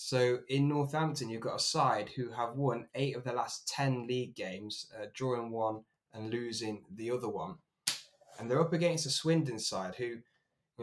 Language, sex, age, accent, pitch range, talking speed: English, male, 20-39, British, 120-145 Hz, 190 wpm